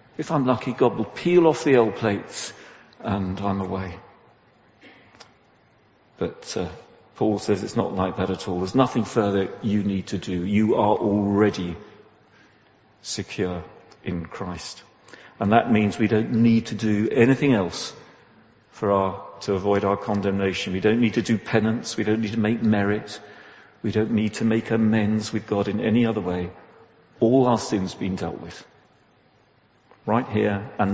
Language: English